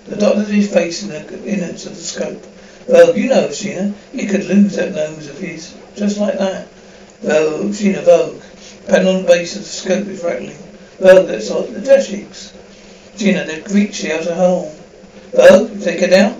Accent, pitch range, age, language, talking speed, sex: British, 175-205 Hz, 60-79, English, 190 wpm, male